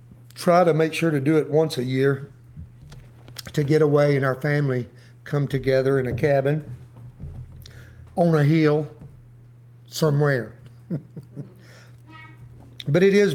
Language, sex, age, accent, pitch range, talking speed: English, male, 60-79, American, 120-170 Hz, 125 wpm